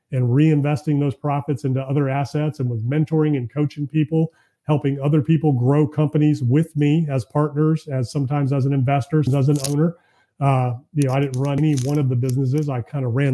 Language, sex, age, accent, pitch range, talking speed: English, male, 30-49, American, 135-155 Hz, 200 wpm